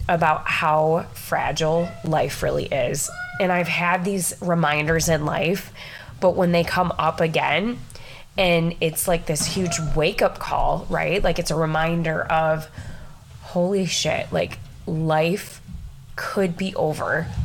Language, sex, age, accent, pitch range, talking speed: English, female, 20-39, American, 165-215 Hz, 140 wpm